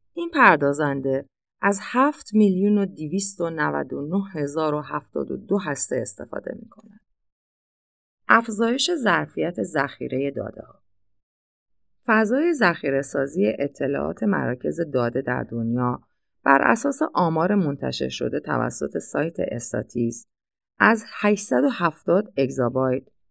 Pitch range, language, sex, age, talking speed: 125-210 Hz, Persian, female, 30-49, 85 wpm